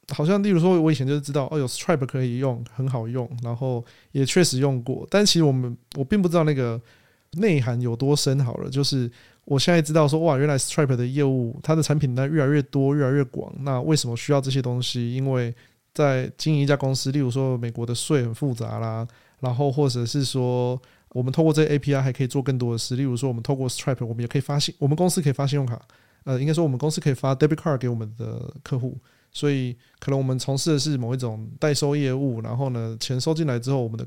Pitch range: 125-150 Hz